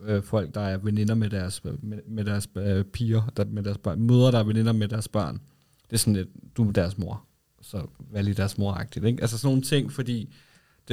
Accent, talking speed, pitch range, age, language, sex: native, 190 wpm, 105-120 Hz, 30-49, Danish, male